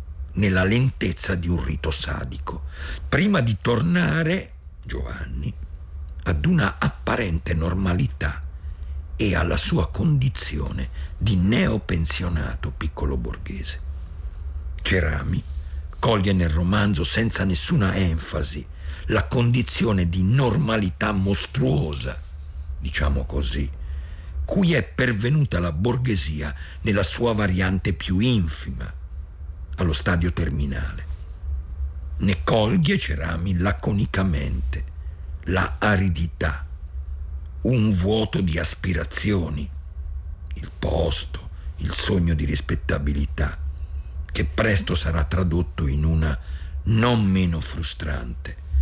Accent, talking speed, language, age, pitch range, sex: native, 90 wpm, Italian, 50-69, 70-95 Hz, male